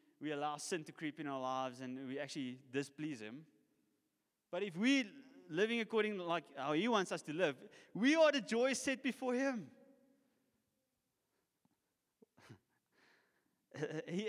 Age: 20-39